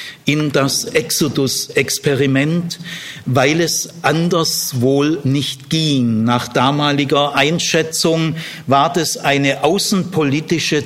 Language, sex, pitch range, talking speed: German, male, 140-190 Hz, 90 wpm